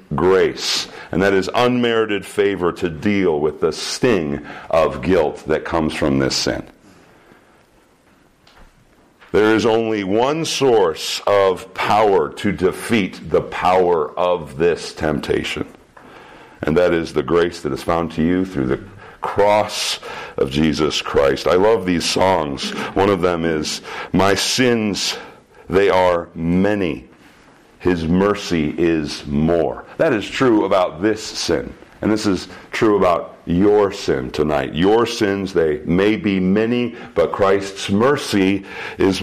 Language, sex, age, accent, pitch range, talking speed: English, male, 50-69, American, 85-120 Hz, 135 wpm